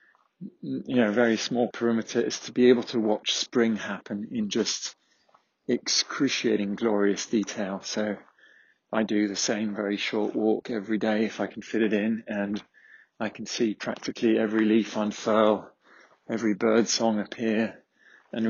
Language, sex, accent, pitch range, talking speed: English, male, British, 105-115 Hz, 150 wpm